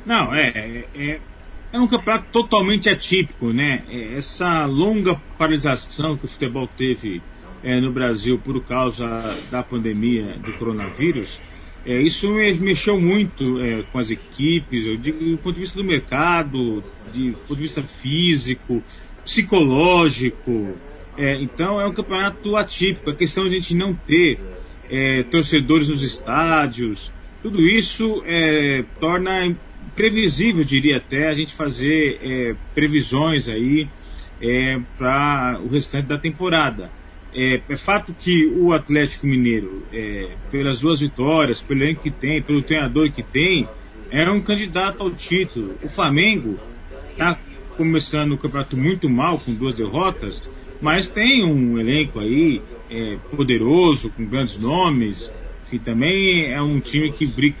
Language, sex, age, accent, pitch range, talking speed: Portuguese, male, 40-59, Brazilian, 120-170 Hz, 145 wpm